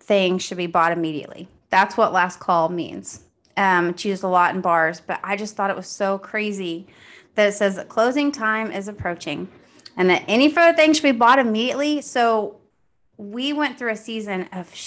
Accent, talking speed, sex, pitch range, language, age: American, 195 wpm, female, 180-220 Hz, English, 30-49